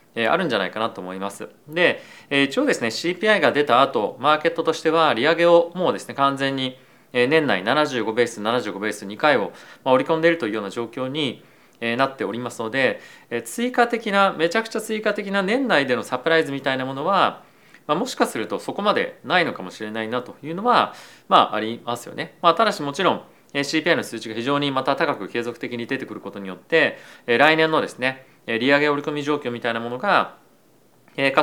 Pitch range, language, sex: 120-165 Hz, Japanese, male